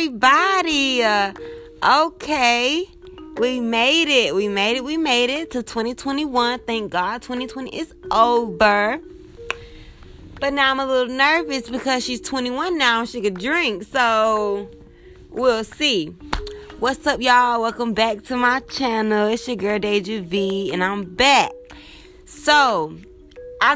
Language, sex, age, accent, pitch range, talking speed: English, female, 20-39, American, 170-250 Hz, 135 wpm